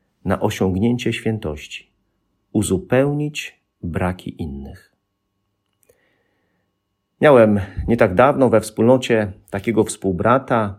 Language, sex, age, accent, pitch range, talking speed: Polish, male, 50-69, native, 100-125 Hz, 80 wpm